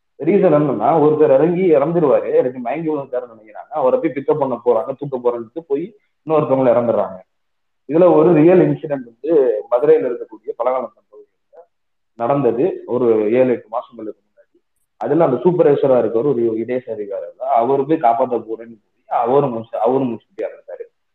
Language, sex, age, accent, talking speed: Tamil, male, 30-49, native, 145 wpm